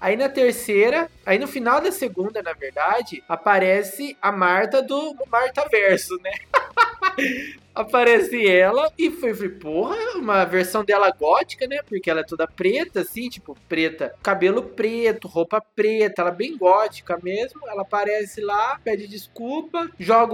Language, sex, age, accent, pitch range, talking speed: Portuguese, male, 20-39, Brazilian, 185-255 Hz, 150 wpm